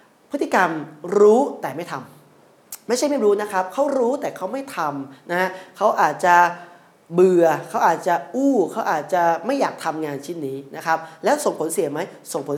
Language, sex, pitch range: Thai, male, 155-205 Hz